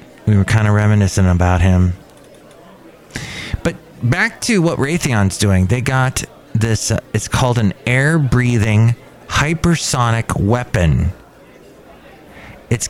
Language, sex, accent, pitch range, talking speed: English, male, American, 100-130 Hz, 110 wpm